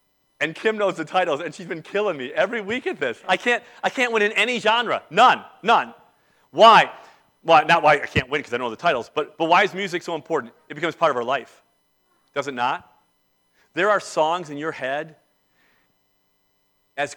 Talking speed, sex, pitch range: 210 wpm, male, 120-180 Hz